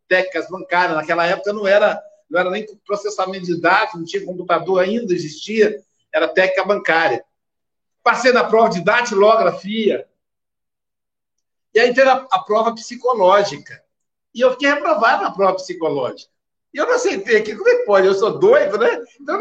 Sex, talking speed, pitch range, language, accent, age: male, 165 wpm, 185-285 Hz, Portuguese, Brazilian, 60-79